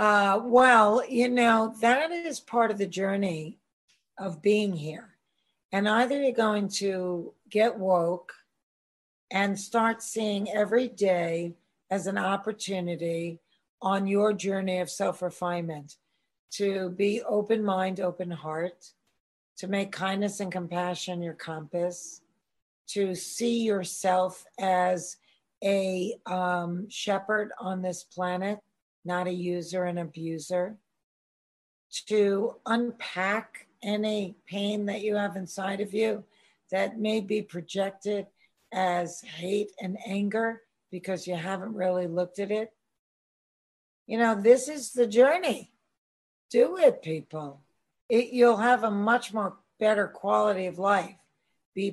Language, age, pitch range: English, 50-69, 180-215 Hz